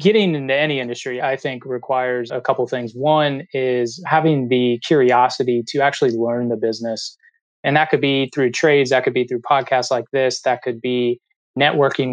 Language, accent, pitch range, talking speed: English, American, 120-140 Hz, 190 wpm